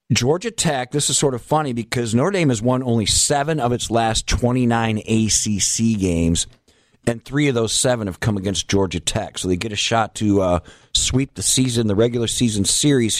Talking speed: 200 wpm